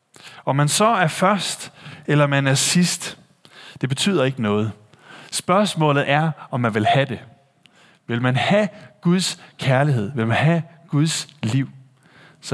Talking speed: 150 wpm